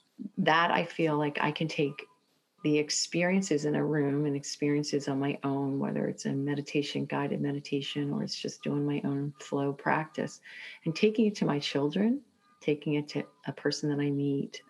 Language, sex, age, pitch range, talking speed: English, female, 40-59, 145-210 Hz, 185 wpm